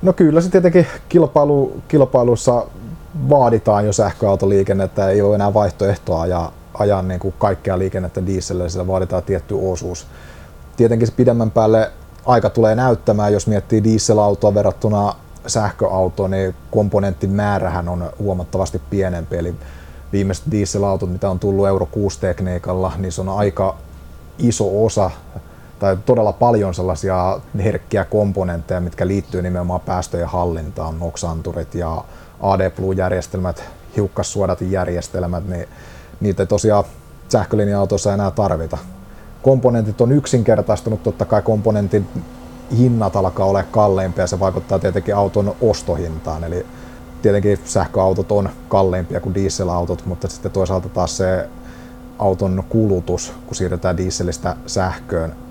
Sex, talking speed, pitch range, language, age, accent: male, 125 wpm, 90-105 Hz, Finnish, 30-49, native